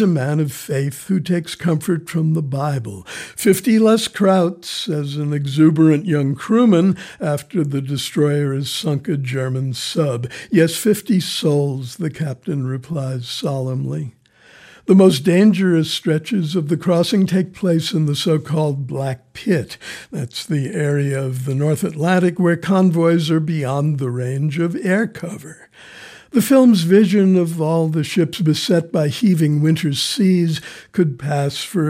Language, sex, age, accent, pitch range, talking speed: English, male, 60-79, American, 145-180 Hz, 145 wpm